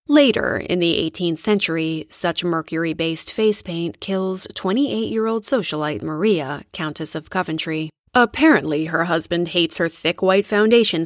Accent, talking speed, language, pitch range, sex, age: American, 130 wpm, English, 160-220 Hz, female, 20-39